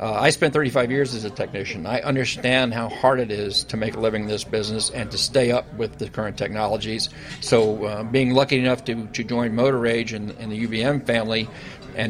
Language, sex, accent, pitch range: English, male, American, 115-130 Hz